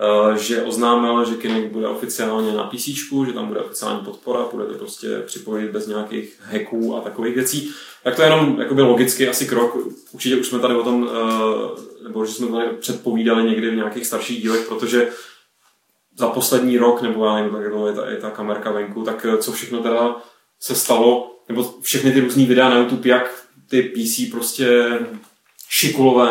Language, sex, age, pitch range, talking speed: Czech, male, 20-39, 115-130 Hz, 180 wpm